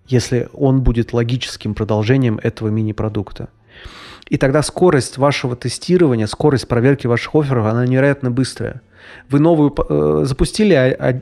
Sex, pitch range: male, 115-135 Hz